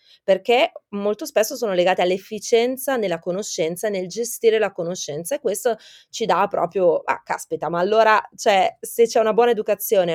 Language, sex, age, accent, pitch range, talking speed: Italian, female, 30-49, native, 170-215 Hz, 155 wpm